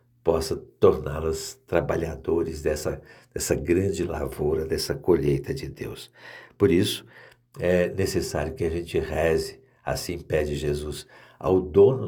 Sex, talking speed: male, 120 wpm